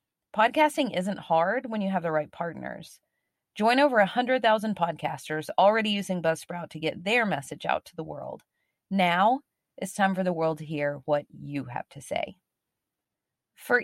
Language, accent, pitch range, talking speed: English, American, 160-200 Hz, 165 wpm